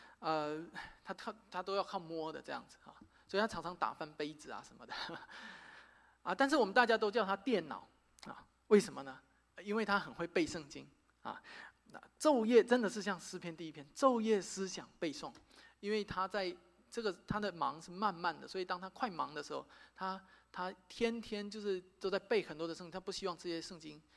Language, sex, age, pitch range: Chinese, male, 20-39, 175-235 Hz